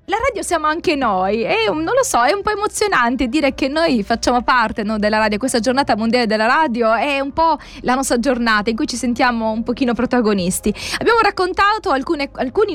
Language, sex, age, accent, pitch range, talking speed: Italian, female, 20-39, native, 230-300 Hz, 195 wpm